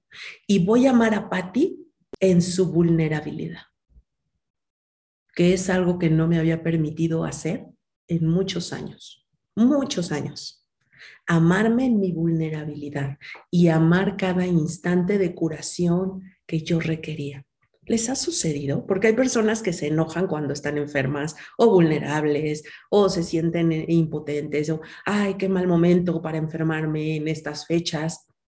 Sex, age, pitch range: female, 50-69, 155-185 Hz